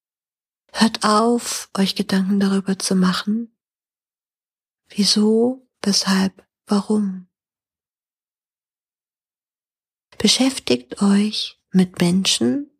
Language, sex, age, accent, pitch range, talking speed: German, female, 40-59, German, 205-245 Hz, 65 wpm